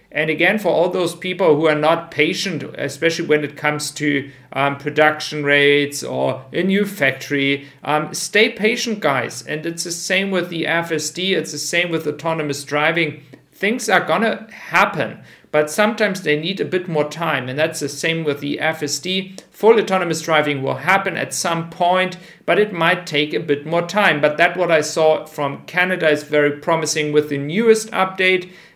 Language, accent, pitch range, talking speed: German, German, 145-180 Hz, 185 wpm